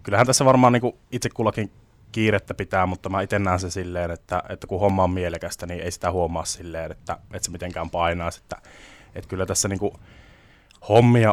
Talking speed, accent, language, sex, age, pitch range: 185 wpm, native, Finnish, male, 20-39, 90-105 Hz